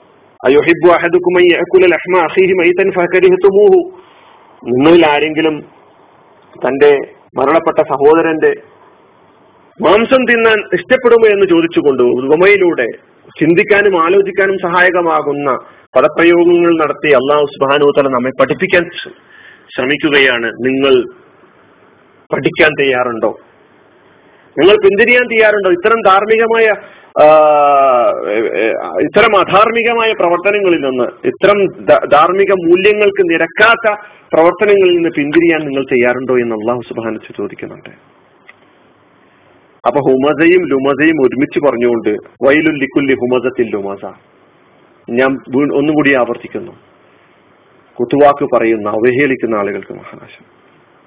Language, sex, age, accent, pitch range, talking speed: Malayalam, male, 40-59, native, 145-240 Hz, 70 wpm